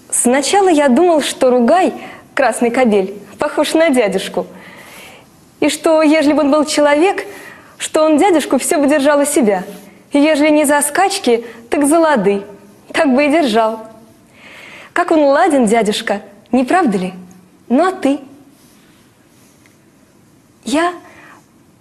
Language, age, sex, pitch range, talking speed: Russian, 20-39, female, 230-320 Hz, 130 wpm